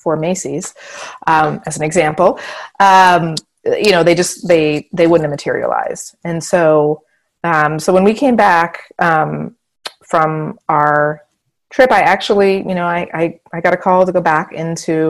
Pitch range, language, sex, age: 135-170 Hz, English, female, 30-49